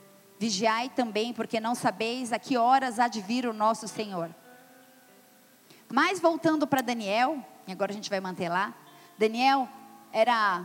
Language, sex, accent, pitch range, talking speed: Portuguese, female, Brazilian, 195-250 Hz, 150 wpm